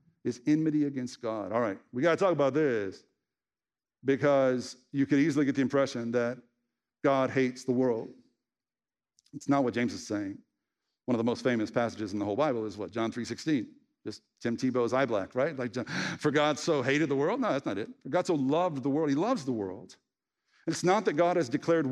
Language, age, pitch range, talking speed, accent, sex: English, 50-69, 130-175 Hz, 220 wpm, American, male